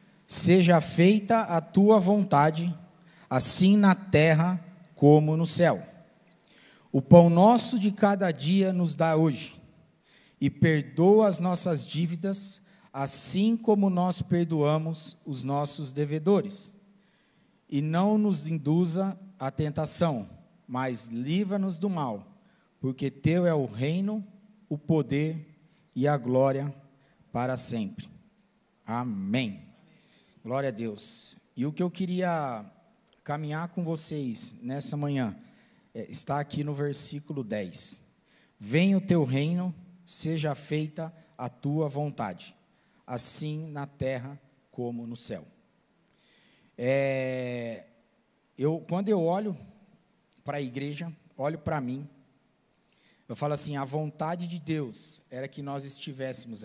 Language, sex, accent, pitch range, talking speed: Portuguese, male, Brazilian, 140-190 Hz, 115 wpm